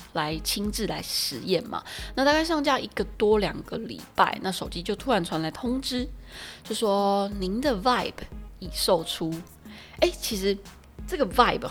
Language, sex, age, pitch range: Chinese, female, 20-39, 170-230 Hz